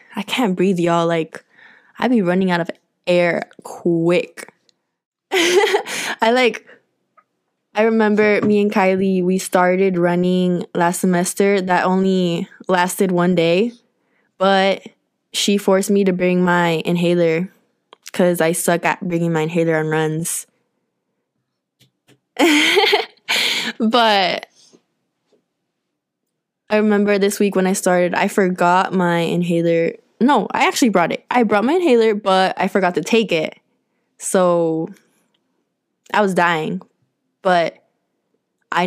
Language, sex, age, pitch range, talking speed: English, female, 10-29, 175-215 Hz, 120 wpm